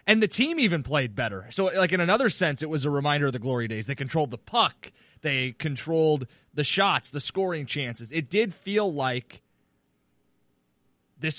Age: 20-39